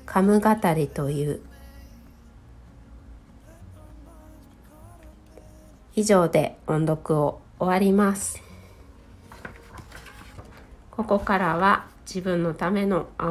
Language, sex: Japanese, female